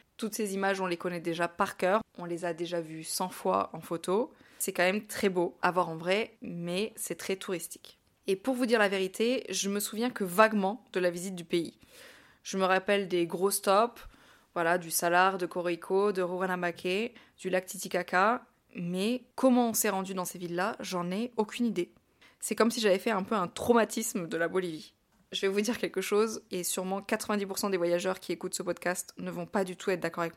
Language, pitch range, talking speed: French, 180-225 Hz, 215 wpm